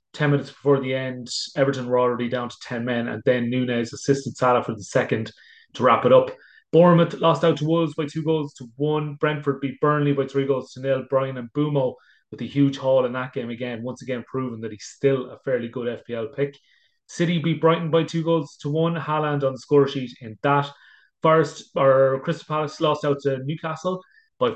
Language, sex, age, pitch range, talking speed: English, male, 30-49, 125-155 Hz, 215 wpm